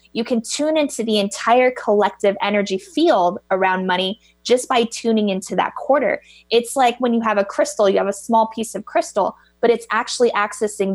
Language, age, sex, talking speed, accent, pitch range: English, 20-39, female, 190 wpm, American, 195-240 Hz